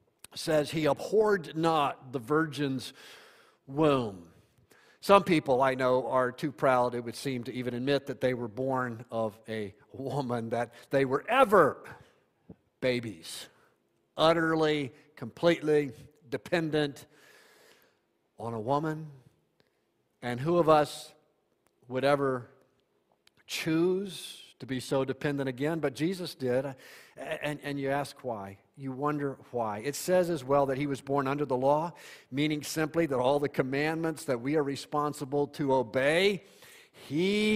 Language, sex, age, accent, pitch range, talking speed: English, male, 50-69, American, 135-160 Hz, 135 wpm